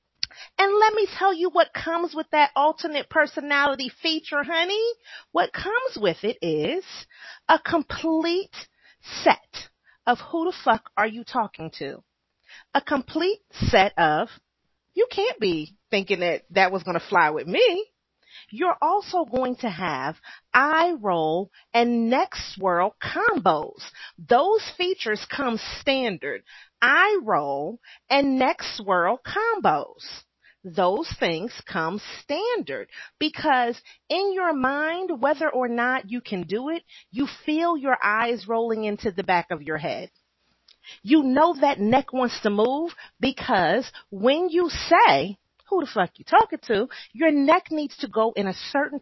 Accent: American